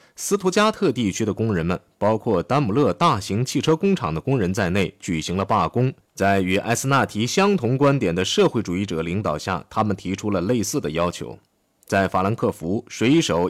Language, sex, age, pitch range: Chinese, male, 20-39, 90-140 Hz